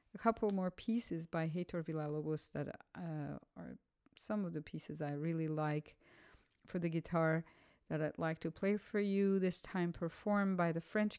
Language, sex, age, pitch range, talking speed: English, female, 50-69, 150-175 Hz, 175 wpm